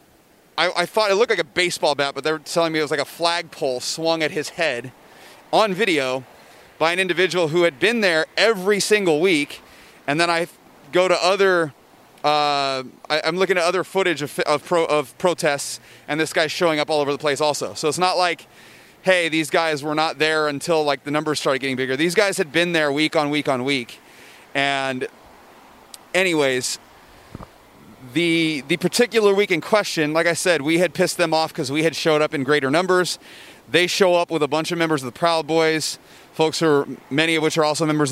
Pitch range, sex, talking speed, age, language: 145-175 Hz, male, 215 wpm, 30-49, English